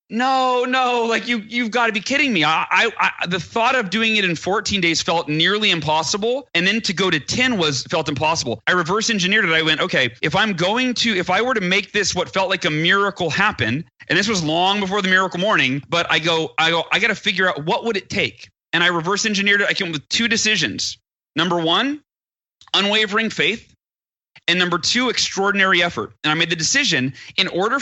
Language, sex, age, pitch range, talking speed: English, male, 30-49, 160-205 Hz, 225 wpm